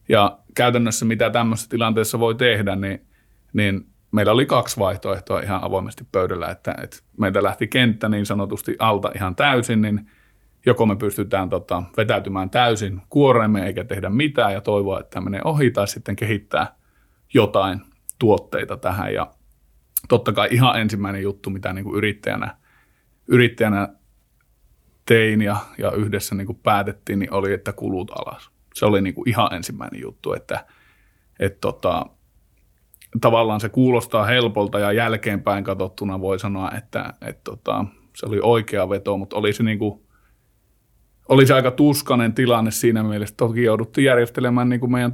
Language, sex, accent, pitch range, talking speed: Finnish, male, native, 100-115 Hz, 145 wpm